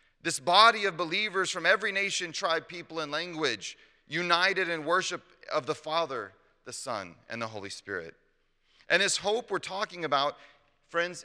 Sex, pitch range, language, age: male, 135-175 Hz, English, 30-49